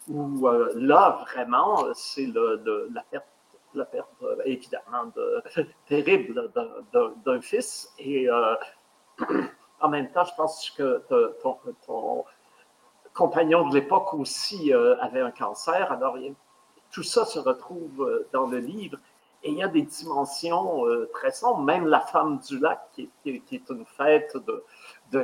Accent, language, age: French, French, 50-69